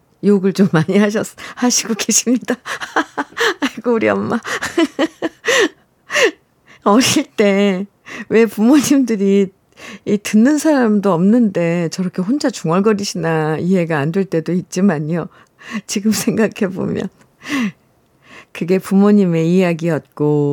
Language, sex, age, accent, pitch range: Korean, female, 50-69, native, 165-220 Hz